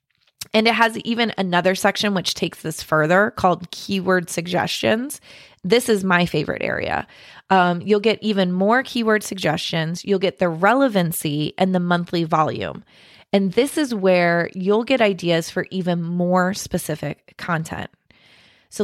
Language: English